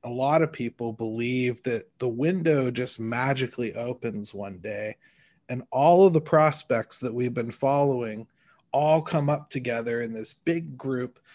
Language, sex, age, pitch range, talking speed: English, male, 30-49, 125-160 Hz, 160 wpm